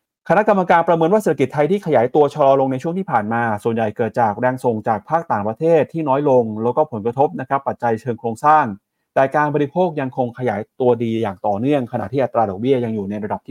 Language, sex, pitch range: Thai, male, 110-145 Hz